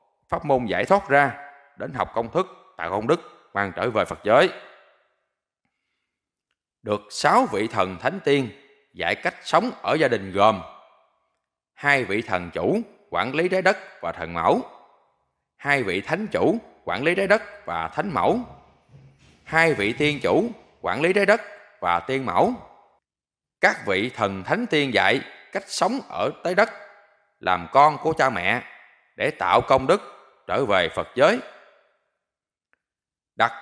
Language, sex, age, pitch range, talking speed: Vietnamese, male, 20-39, 100-160 Hz, 155 wpm